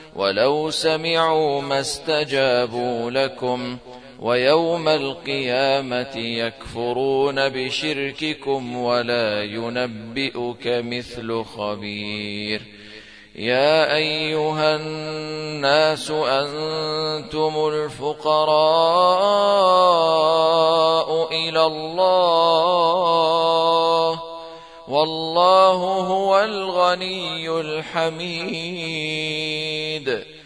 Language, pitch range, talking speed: Arabic, 130-160 Hz, 45 wpm